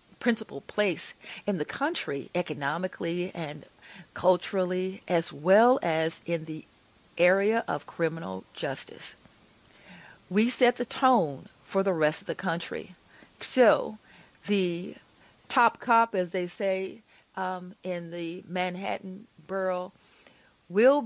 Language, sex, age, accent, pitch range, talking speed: English, female, 40-59, American, 175-215 Hz, 115 wpm